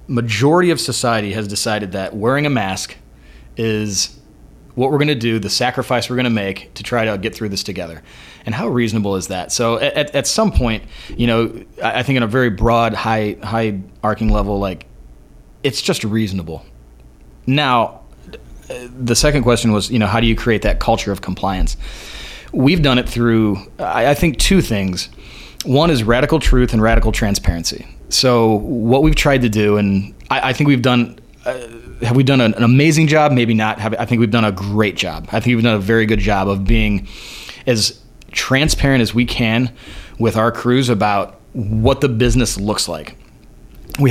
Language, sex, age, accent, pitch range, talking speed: English, male, 30-49, American, 100-125 Hz, 190 wpm